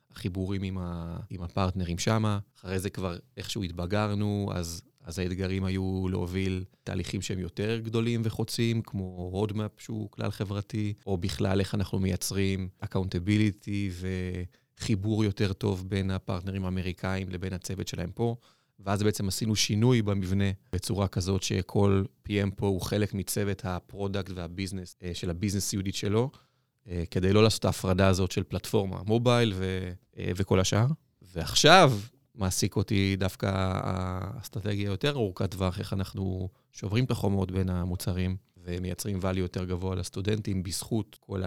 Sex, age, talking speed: male, 30-49, 130 wpm